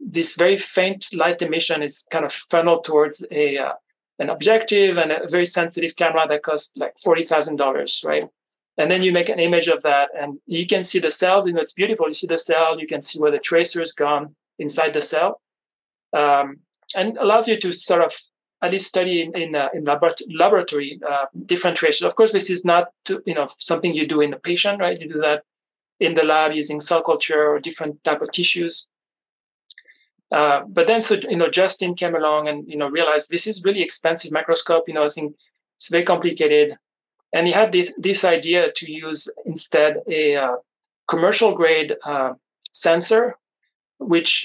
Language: English